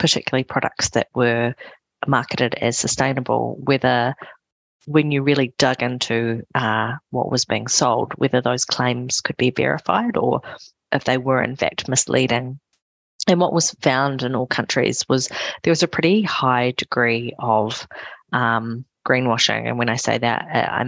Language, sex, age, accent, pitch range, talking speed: English, female, 30-49, Australian, 120-140 Hz, 155 wpm